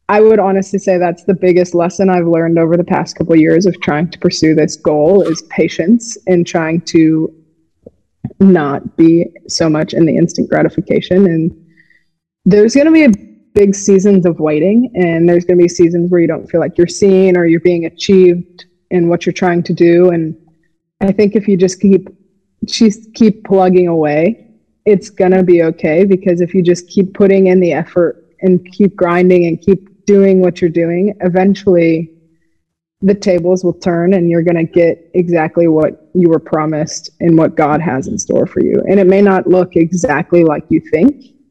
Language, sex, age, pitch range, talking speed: English, female, 20-39, 165-190 Hz, 195 wpm